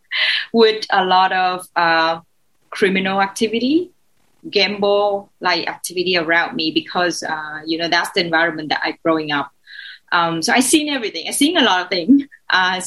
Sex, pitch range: female, 185-235 Hz